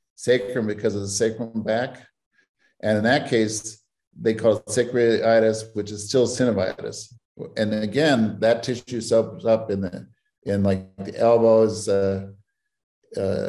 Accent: American